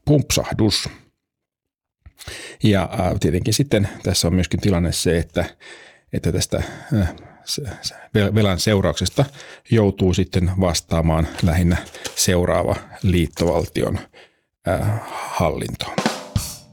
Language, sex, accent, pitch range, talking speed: Finnish, male, native, 90-110 Hz, 75 wpm